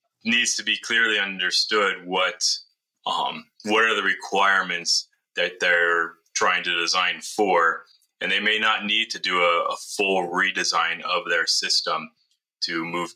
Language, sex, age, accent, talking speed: English, male, 30-49, American, 150 wpm